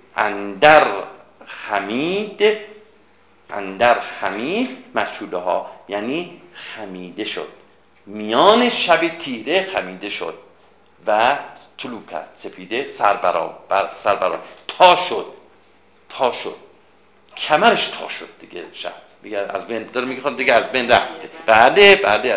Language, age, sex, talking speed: Persian, 50-69, male, 105 wpm